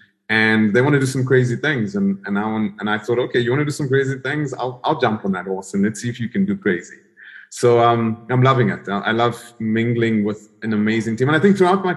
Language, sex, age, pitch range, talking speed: English, male, 30-49, 105-140 Hz, 265 wpm